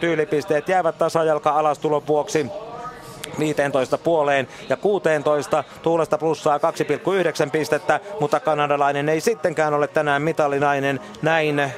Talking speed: 95 wpm